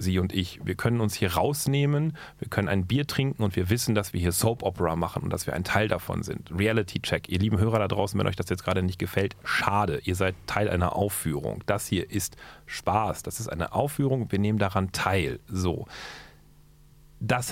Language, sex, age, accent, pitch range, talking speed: German, male, 40-59, German, 95-115 Hz, 215 wpm